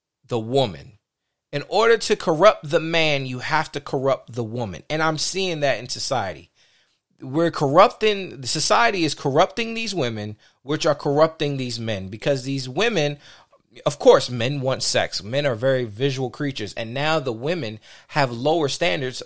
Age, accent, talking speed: 30-49, American, 165 wpm